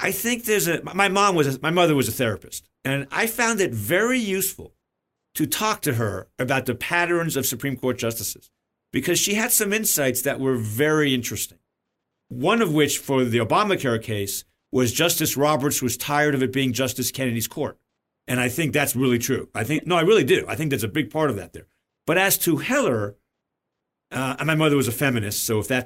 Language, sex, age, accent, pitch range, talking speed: English, male, 50-69, American, 120-180 Hz, 200 wpm